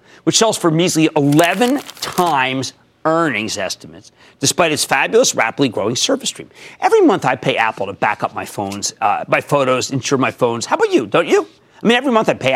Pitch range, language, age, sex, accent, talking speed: 135-195 Hz, English, 40-59, male, American, 200 wpm